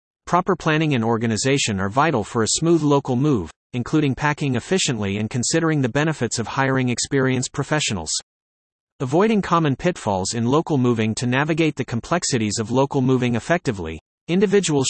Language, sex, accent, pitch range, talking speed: English, male, American, 115-155 Hz, 150 wpm